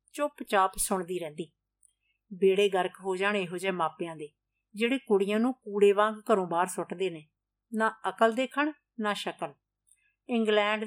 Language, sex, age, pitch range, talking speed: Punjabi, female, 50-69, 185-240 Hz, 145 wpm